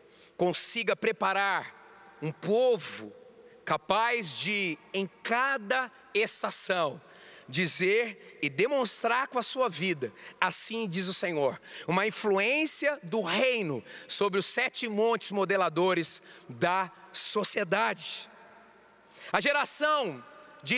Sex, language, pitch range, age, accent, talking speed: male, Portuguese, 225-305 Hz, 40-59, Brazilian, 100 wpm